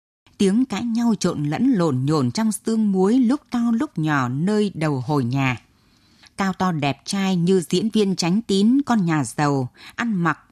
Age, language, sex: 20-39, Vietnamese, female